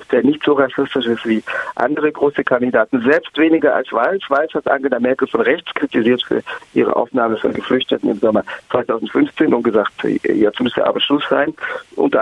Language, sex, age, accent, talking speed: German, male, 50-69, German, 175 wpm